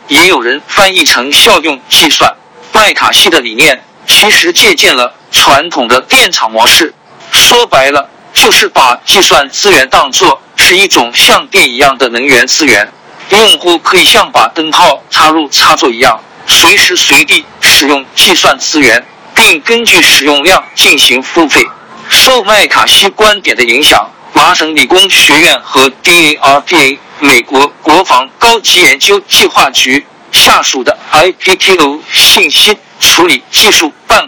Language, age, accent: Chinese, 50-69, native